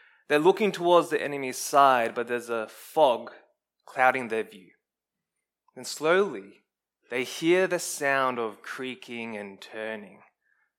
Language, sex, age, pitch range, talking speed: English, male, 20-39, 125-165 Hz, 130 wpm